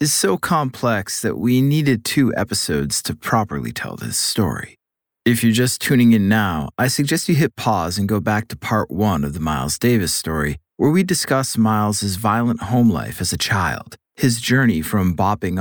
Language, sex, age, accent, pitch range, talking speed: English, male, 30-49, American, 95-125 Hz, 190 wpm